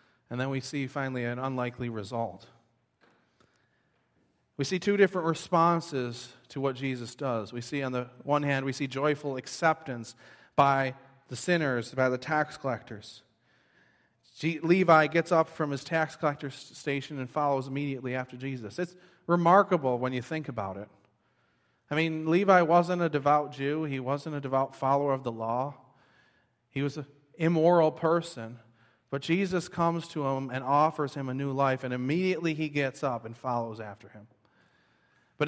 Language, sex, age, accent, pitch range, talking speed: English, male, 30-49, American, 125-150 Hz, 160 wpm